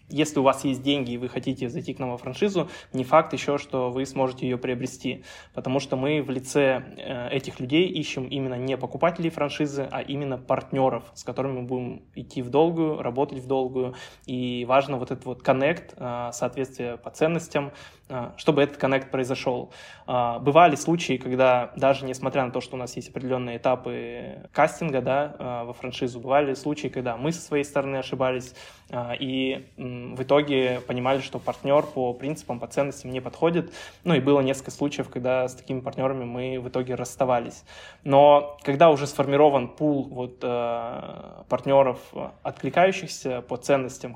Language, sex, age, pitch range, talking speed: Russian, male, 20-39, 125-140 Hz, 160 wpm